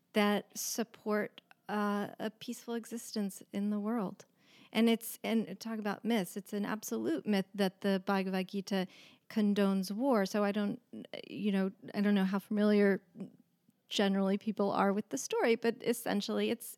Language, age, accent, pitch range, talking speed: English, 40-59, American, 195-220 Hz, 155 wpm